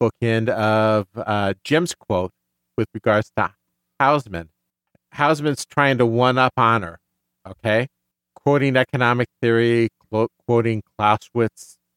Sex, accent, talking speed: male, American, 110 wpm